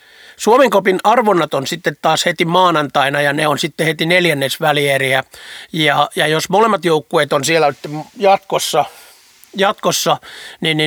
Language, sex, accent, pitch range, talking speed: Finnish, male, native, 140-175 Hz, 135 wpm